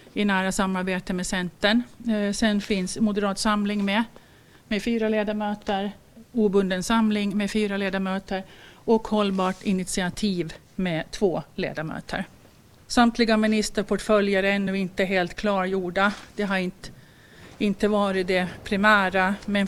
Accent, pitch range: native, 190-220 Hz